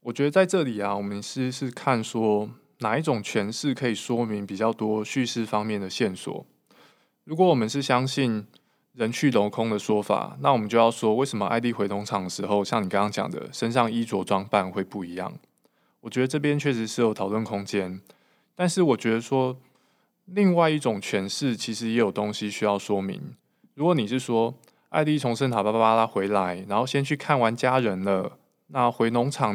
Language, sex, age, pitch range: Chinese, male, 20-39, 100-125 Hz